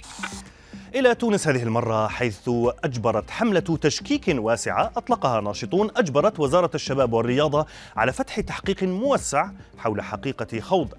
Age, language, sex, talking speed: 30-49, Arabic, male, 120 wpm